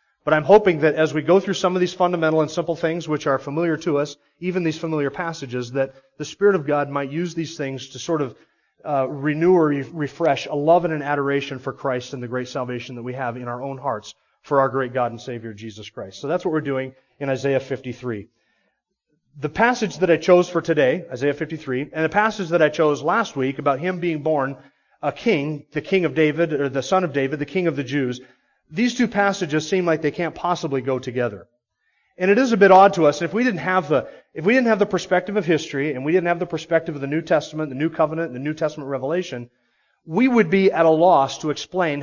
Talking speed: 240 wpm